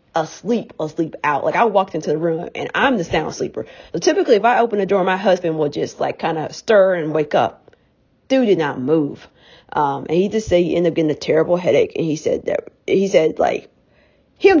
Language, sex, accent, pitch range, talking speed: English, female, American, 165-235 Hz, 230 wpm